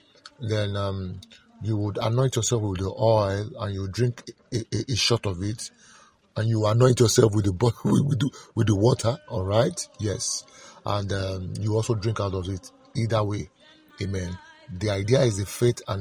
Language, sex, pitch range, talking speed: English, male, 100-130 Hz, 185 wpm